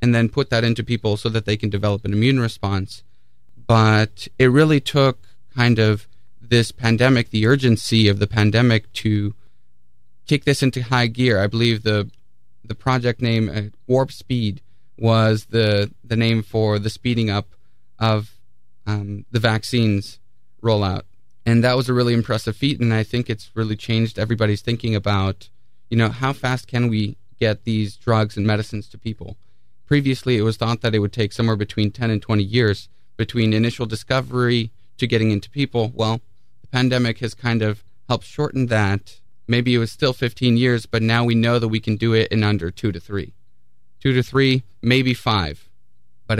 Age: 30-49